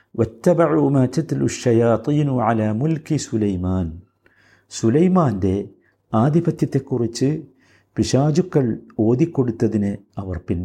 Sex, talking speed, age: male, 95 wpm, 50-69